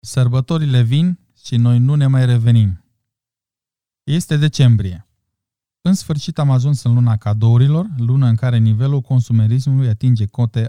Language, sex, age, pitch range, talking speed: Romanian, male, 20-39, 115-140 Hz, 135 wpm